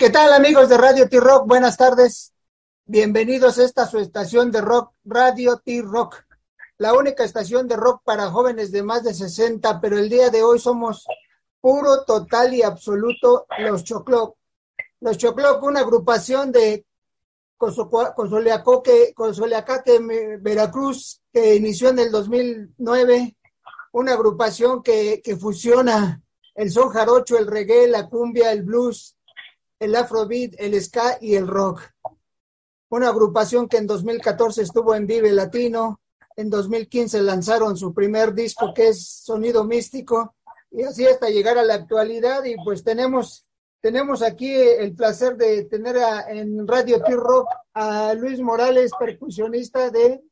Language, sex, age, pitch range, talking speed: English, male, 50-69, 220-250 Hz, 140 wpm